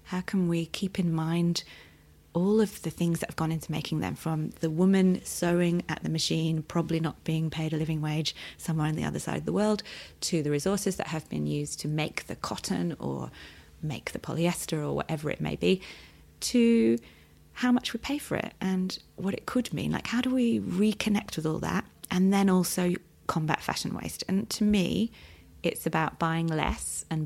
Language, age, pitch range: English, 30-49, 115-190 Hz